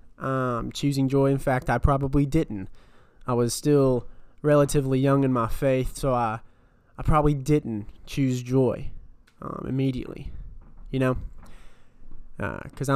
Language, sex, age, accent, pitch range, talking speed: English, male, 20-39, American, 115-135 Hz, 130 wpm